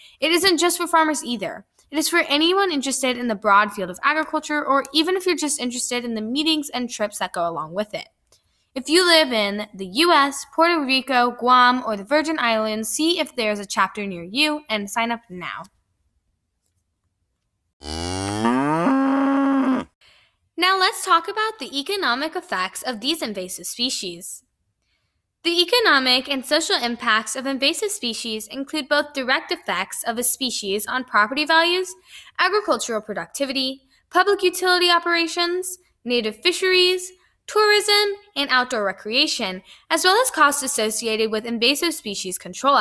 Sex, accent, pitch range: female, American, 220-335 Hz